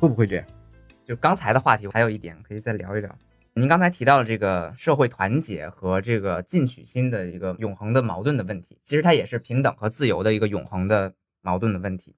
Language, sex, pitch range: Chinese, male, 110-165 Hz